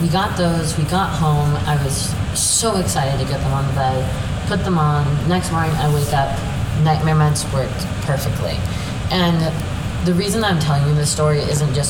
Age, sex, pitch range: 20-39, female, 105-155 Hz